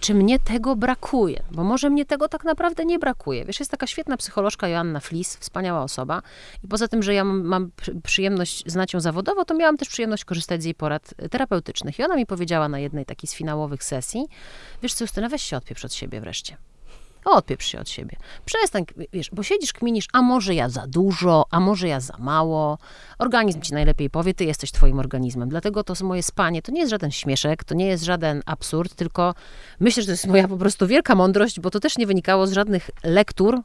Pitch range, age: 155-210 Hz, 30-49